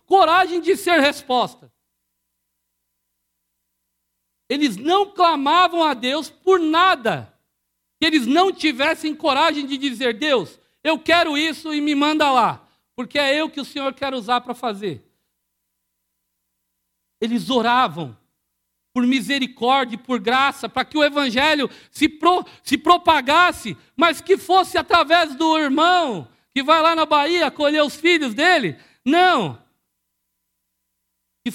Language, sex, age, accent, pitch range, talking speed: Portuguese, male, 50-69, Brazilian, 250-330 Hz, 130 wpm